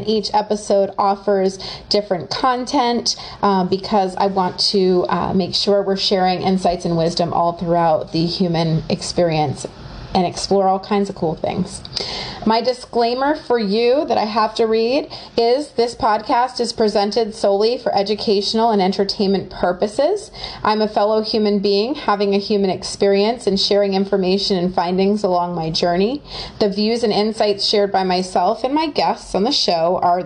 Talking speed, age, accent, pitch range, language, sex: 165 wpm, 30-49, American, 185-215 Hz, English, female